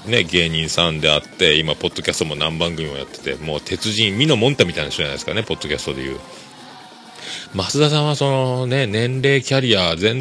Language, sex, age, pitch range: Japanese, male, 40-59, 80-130 Hz